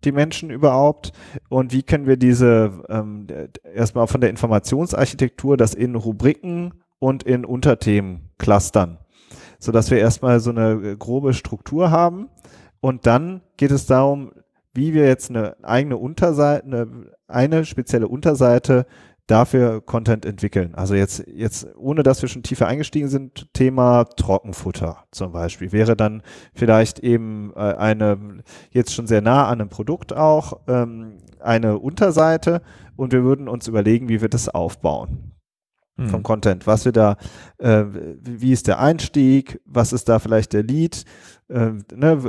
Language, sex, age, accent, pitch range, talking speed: German, male, 30-49, German, 110-135 Hz, 145 wpm